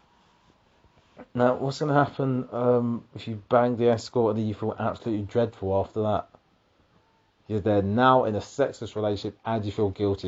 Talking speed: 170 wpm